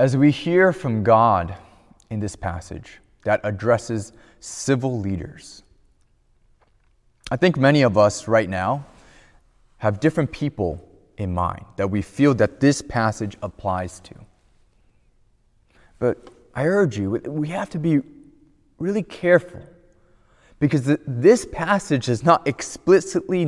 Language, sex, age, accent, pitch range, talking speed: English, male, 20-39, American, 115-175 Hz, 125 wpm